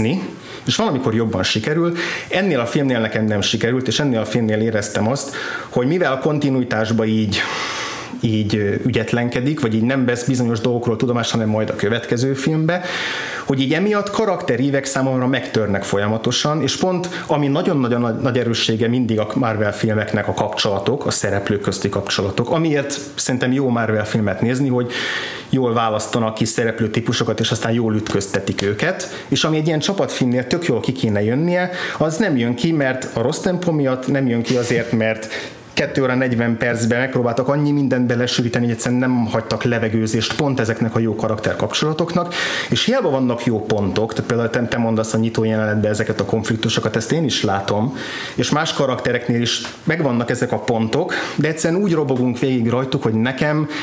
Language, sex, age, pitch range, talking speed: Hungarian, male, 30-49, 110-135 Hz, 170 wpm